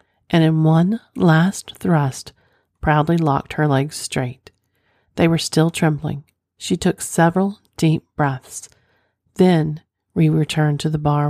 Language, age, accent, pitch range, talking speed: English, 40-59, American, 145-165 Hz, 135 wpm